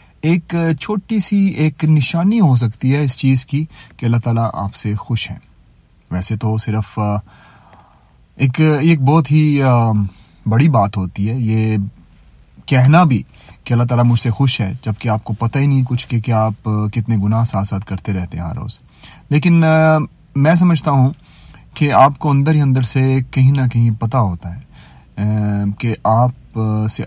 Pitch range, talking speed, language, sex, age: 110-140 Hz, 175 wpm, Urdu, male, 30-49